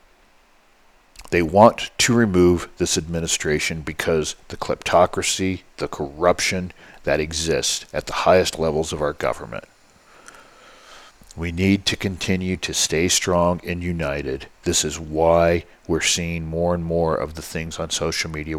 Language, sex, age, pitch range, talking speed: English, male, 50-69, 80-95 Hz, 140 wpm